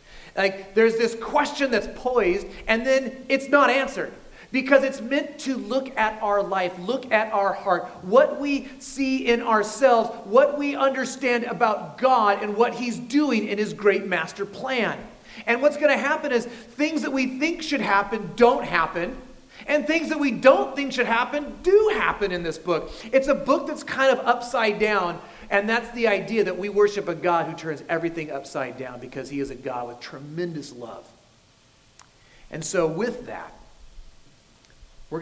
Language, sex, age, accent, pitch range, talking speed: English, male, 40-59, American, 180-255 Hz, 175 wpm